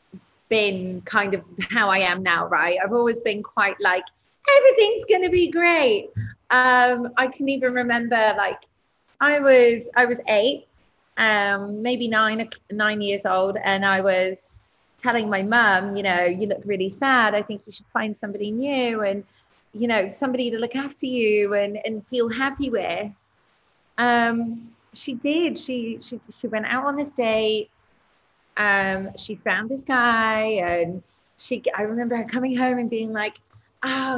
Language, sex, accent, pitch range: English, female, British, 195-245 Hz